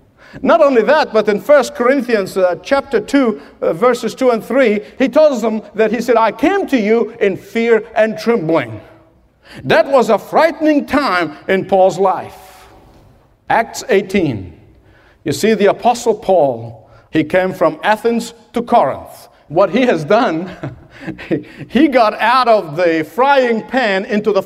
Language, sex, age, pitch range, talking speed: English, male, 50-69, 195-260 Hz, 155 wpm